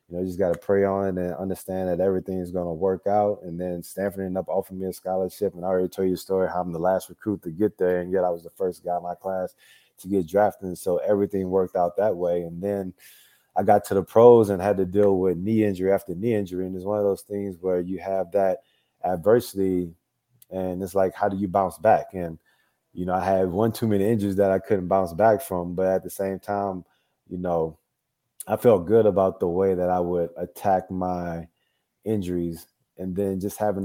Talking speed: 240 wpm